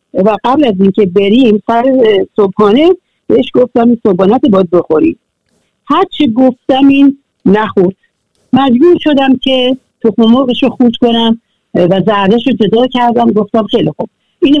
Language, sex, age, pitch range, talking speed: Persian, female, 60-79, 200-265 Hz, 150 wpm